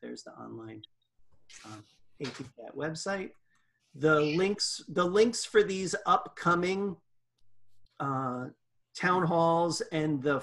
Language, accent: English, American